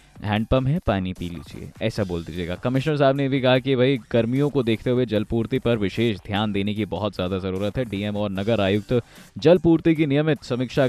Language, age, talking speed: Hindi, 20-39, 210 wpm